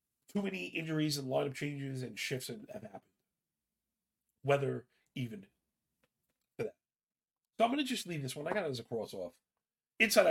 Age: 40-59